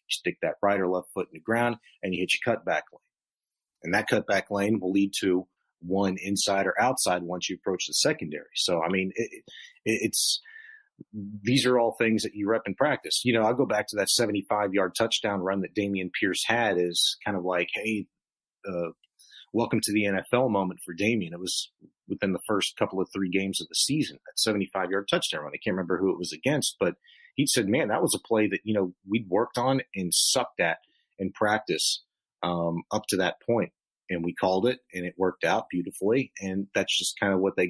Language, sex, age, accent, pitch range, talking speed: English, male, 30-49, American, 95-115 Hz, 220 wpm